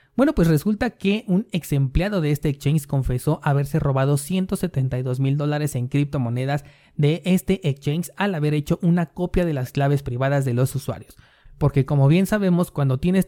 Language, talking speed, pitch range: Spanish, 175 wpm, 135-175 Hz